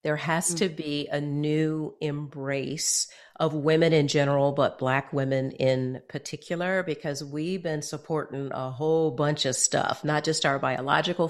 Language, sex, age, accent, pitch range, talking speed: English, female, 50-69, American, 145-175 Hz, 155 wpm